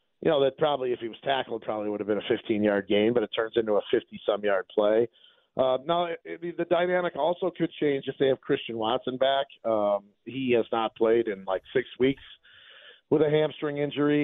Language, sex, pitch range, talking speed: English, male, 115-140 Hz, 200 wpm